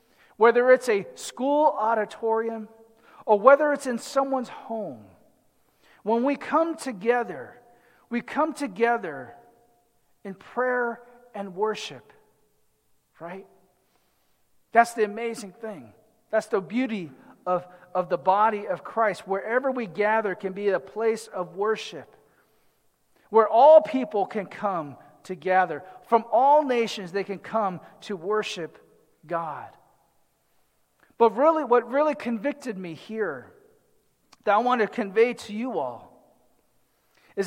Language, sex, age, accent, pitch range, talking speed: English, male, 40-59, American, 185-240 Hz, 120 wpm